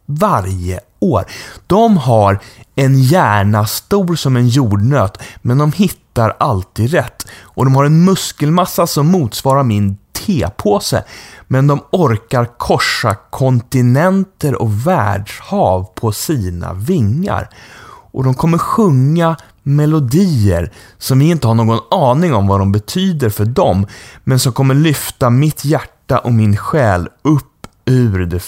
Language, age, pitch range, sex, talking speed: English, 30-49, 105-145 Hz, male, 135 wpm